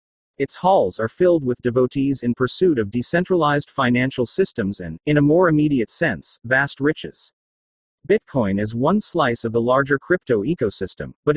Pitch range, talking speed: 120-165 Hz, 160 wpm